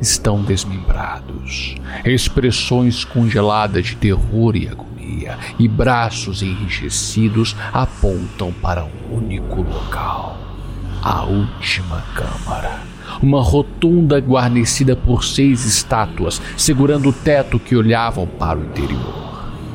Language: Portuguese